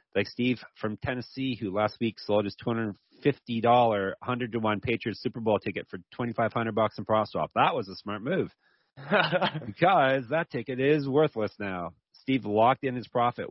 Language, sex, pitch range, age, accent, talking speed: English, male, 100-125 Hz, 30-49, American, 165 wpm